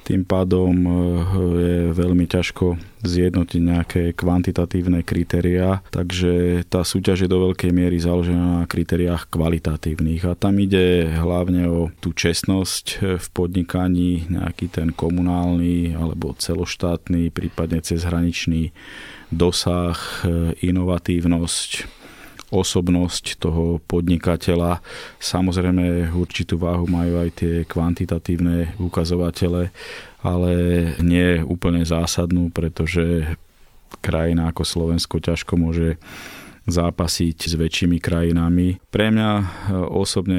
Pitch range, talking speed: 85-90 Hz, 100 wpm